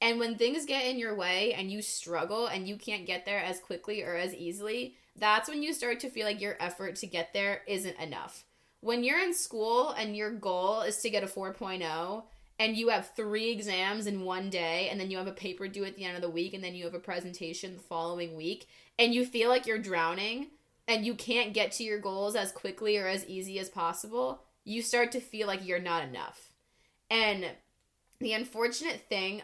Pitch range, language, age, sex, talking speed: 180-225 Hz, English, 20-39, female, 220 wpm